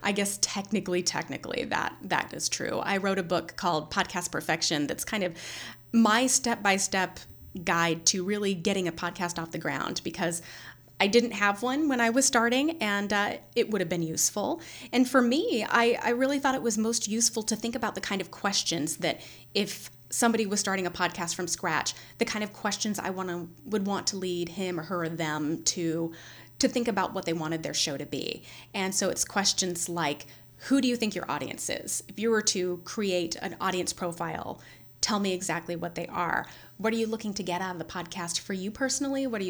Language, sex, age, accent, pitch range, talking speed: English, female, 30-49, American, 170-215 Hz, 215 wpm